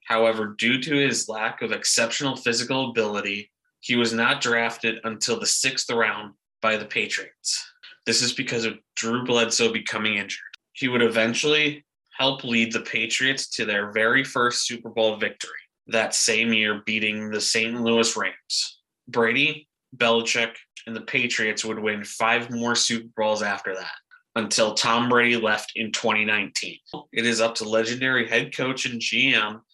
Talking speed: 155 wpm